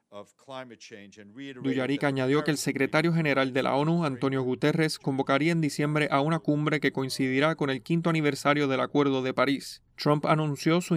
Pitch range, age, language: 135-150 Hz, 30-49, Spanish